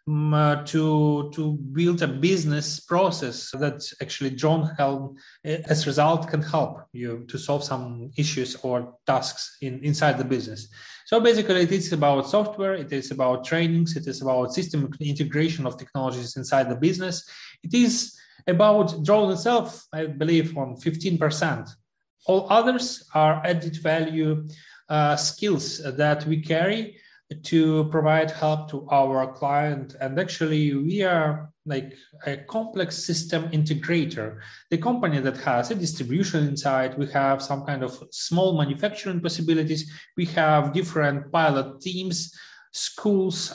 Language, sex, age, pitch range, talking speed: English, male, 30-49, 145-175 Hz, 140 wpm